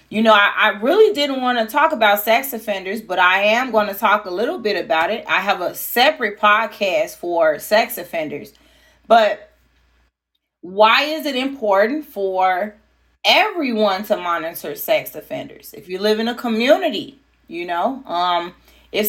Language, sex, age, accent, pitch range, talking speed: English, female, 30-49, American, 200-275 Hz, 165 wpm